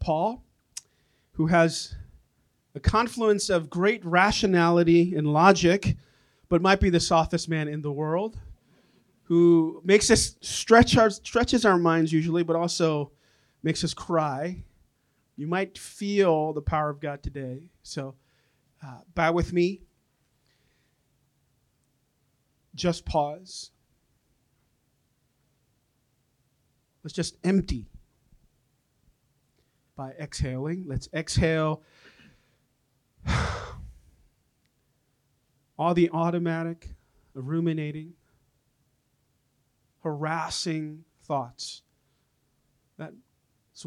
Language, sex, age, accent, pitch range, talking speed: English, male, 40-59, American, 130-165 Hz, 85 wpm